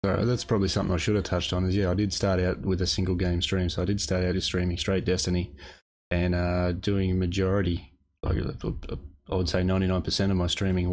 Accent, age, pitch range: Australian, 20-39, 85-95 Hz